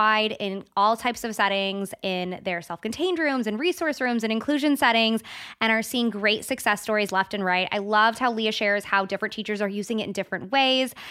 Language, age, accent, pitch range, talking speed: English, 20-39, American, 195-245 Hz, 205 wpm